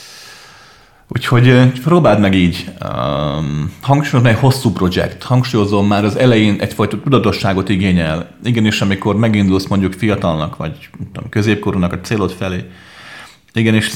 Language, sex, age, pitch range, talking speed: Hungarian, male, 30-49, 95-110 Hz, 125 wpm